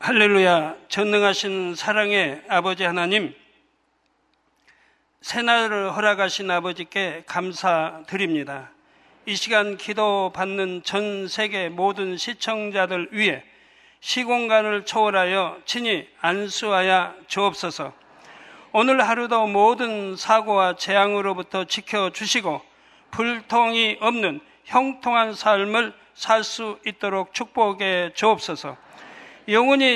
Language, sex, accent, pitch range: Korean, male, native, 190-225 Hz